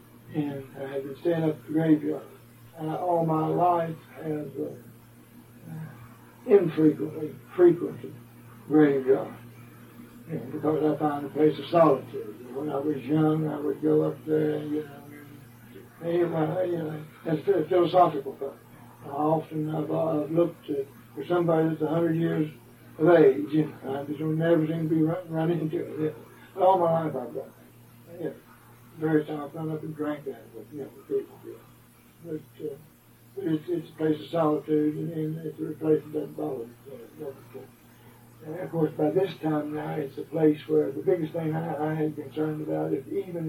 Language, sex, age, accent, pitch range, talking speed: English, male, 60-79, American, 140-165 Hz, 175 wpm